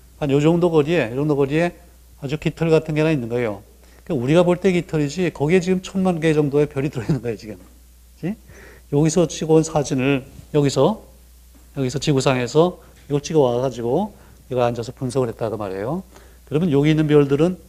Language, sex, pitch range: Korean, male, 120-160 Hz